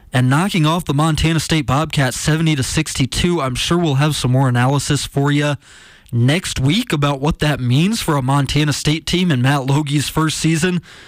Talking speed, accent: 185 wpm, American